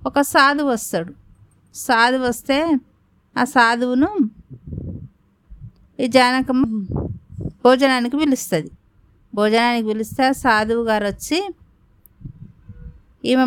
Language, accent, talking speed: Telugu, native, 75 wpm